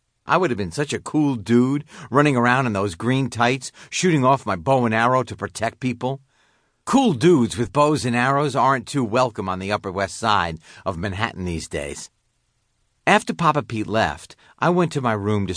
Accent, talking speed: American, 195 wpm